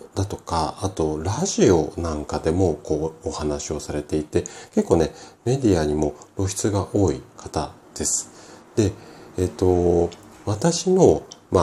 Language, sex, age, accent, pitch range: Japanese, male, 40-59, native, 80-110 Hz